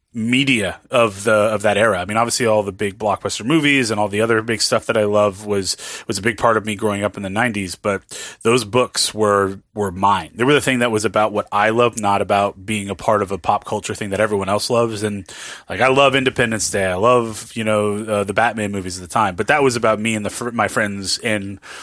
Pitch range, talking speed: 100-120 Hz, 255 wpm